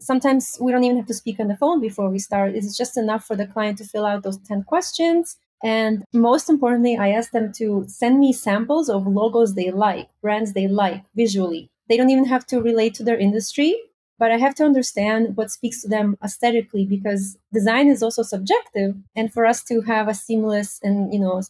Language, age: English, 30-49